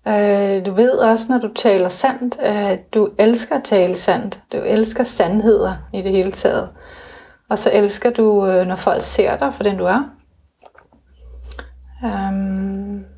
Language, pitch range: Danish, 200-245 Hz